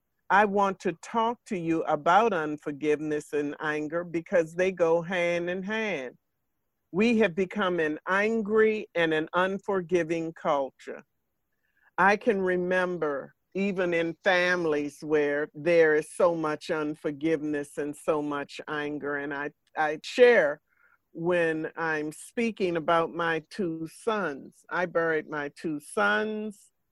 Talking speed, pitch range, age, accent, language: 125 wpm, 150-185 Hz, 50-69, American, English